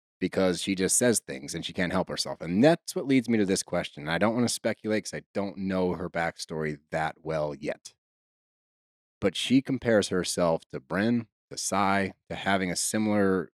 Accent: American